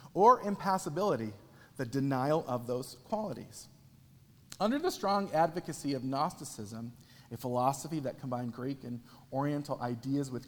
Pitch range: 125-165 Hz